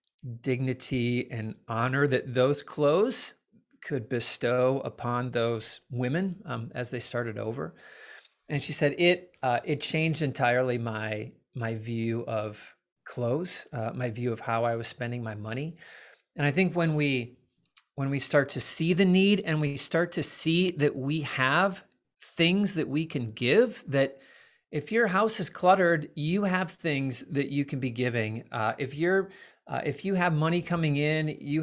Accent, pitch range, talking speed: American, 120-165 Hz, 170 wpm